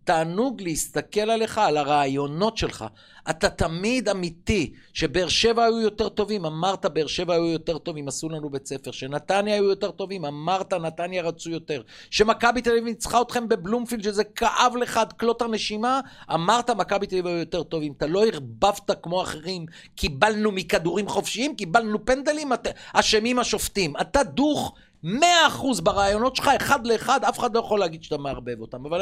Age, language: 50-69, Hebrew